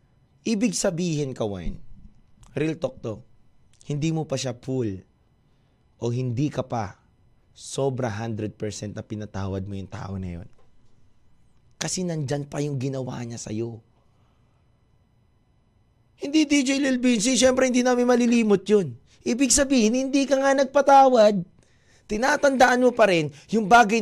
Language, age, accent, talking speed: Filipino, 20-39, native, 130 wpm